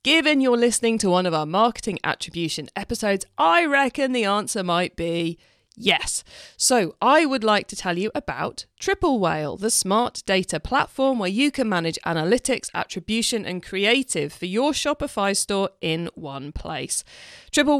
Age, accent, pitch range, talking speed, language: 40-59, British, 180-265 Hz, 160 wpm, English